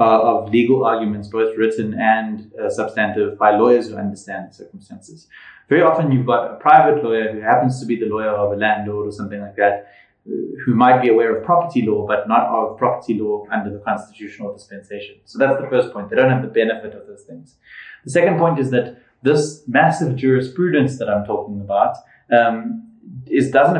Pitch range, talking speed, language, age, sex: 105-135 Hz, 195 wpm, English, 20-39, male